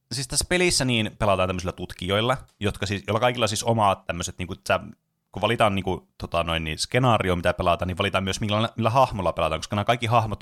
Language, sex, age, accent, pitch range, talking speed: Finnish, male, 30-49, native, 90-110 Hz, 205 wpm